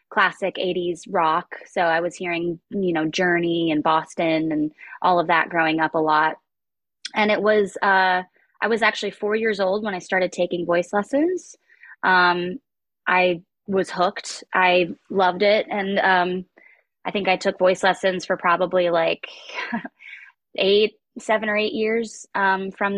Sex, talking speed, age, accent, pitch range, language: female, 160 wpm, 20-39, American, 170-195 Hz, English